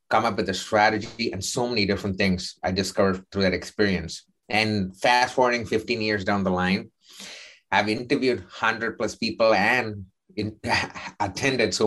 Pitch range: 95-105 Hz